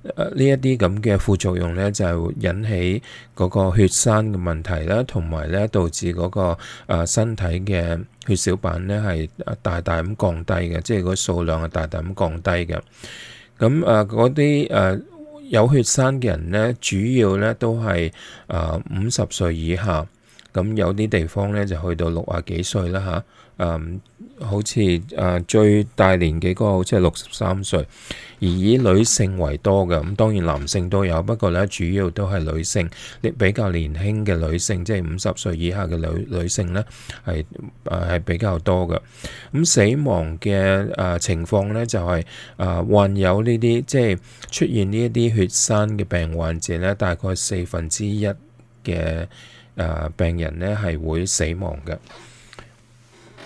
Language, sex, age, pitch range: English, male, 20-39, 85-110 Hz